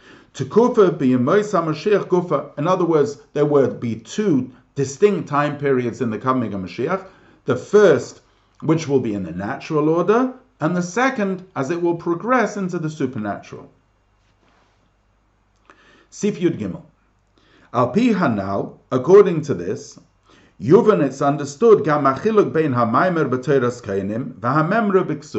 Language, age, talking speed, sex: English, 50-69, 105 wpm, male